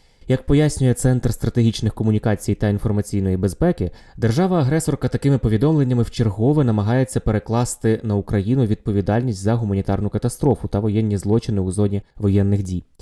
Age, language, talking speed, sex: 20-39, Ukrainian, 130 wpm, male